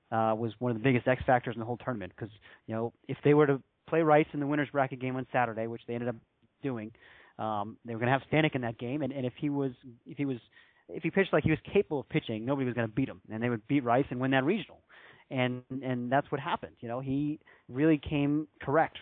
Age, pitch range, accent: 30-49, 110-135 Hz, American